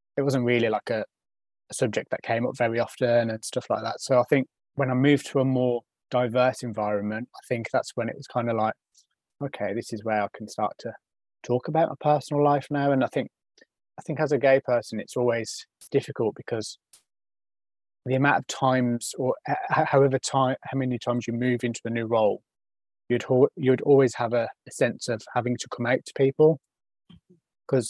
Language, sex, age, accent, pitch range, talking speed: English, male, 20-39, British, 115-130 Hz, 200 wpm